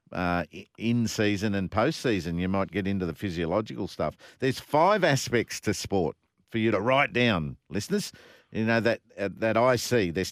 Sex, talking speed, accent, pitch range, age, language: male, 180 wpm, Australian, 105-135 Hz, 50-69, English